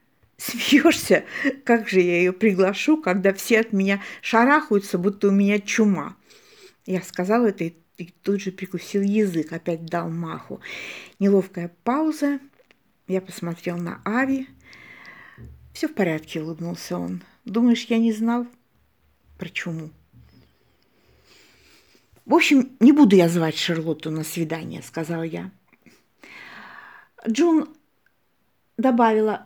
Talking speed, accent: 115 wpm, native